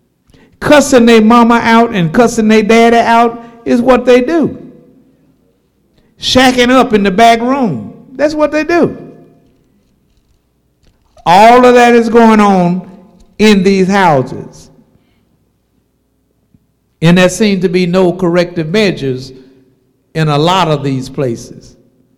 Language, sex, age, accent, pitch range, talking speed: English, male, 60-79, American, 145-195 Hz, 125 wpm